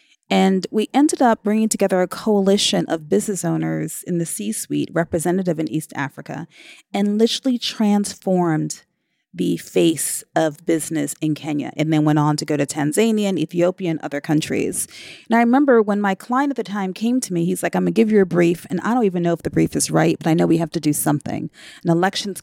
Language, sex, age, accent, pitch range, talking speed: English, female, 30-49, American, 170-220 Hz, 215 wpm